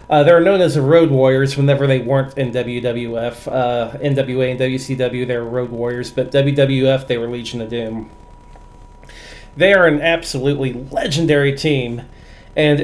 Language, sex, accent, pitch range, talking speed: English, male, American, 130-160 Hz, 155 wpm